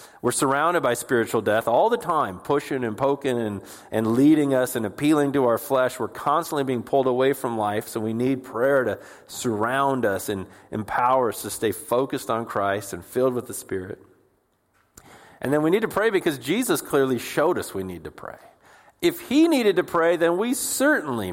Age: 40-59